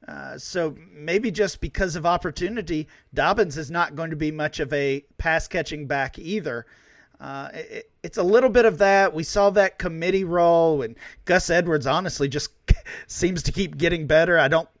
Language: English